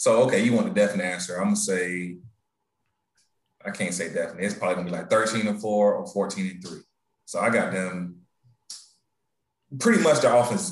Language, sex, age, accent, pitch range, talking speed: English, male, 30-49, American, 95-120 Hz, 185 wpm